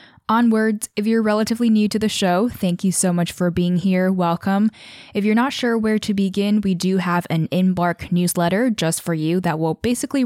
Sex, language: female, English